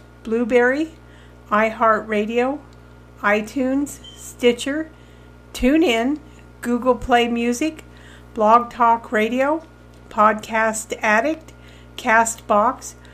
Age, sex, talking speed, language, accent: 50-69, female, 65 wpm, English, American